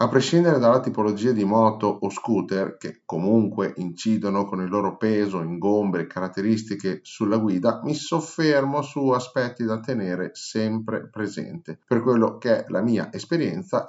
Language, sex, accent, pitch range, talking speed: Italian, male, native, 95-120 Hz, 150 wpm